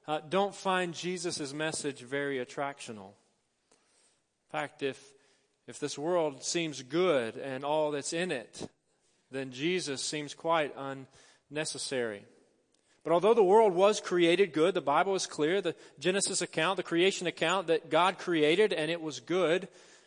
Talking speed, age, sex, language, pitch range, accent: 145 wpm, 40-59, male, English, 140-175 Hz, American